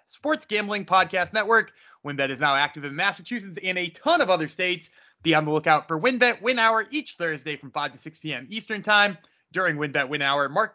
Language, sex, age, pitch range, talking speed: English, male, 30-49, 150-210 Hz, 210 wpm